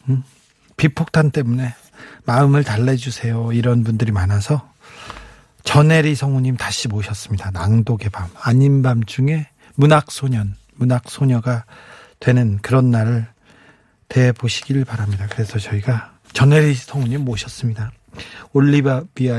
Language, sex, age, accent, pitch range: Korean, male, 40-59, native, 120-155 Hz